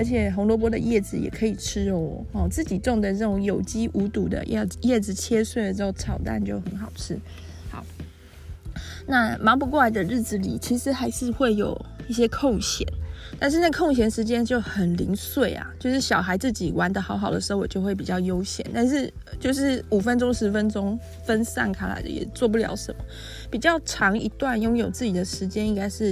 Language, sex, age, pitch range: Chinese, female, 20-39, 180-240 Hz